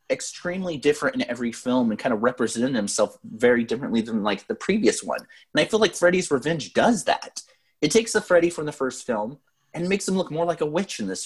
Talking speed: 230 wpm